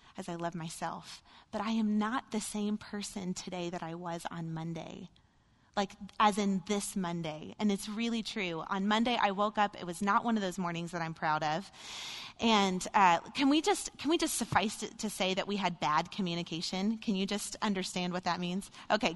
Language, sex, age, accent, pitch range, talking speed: English, female, 20-39, American, 180-225 Hz, 205 wpm